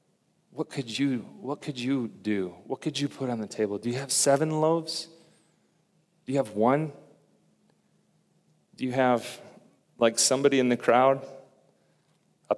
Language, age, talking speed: English, 40-59, 155 wpm